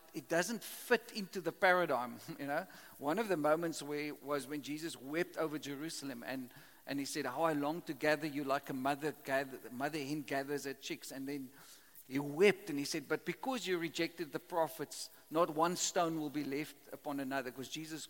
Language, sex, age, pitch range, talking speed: English, male, 50-69, 145-180 Hz, 200 wpm